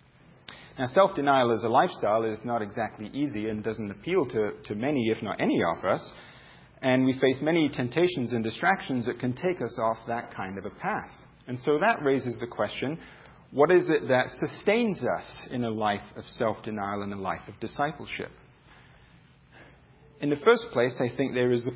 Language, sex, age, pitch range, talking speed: English, male, 40-59, 115-145 Hz, 190 wpm